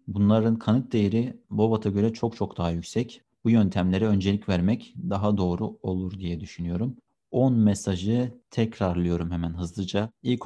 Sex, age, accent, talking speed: male, 30-49, native, 140 wpm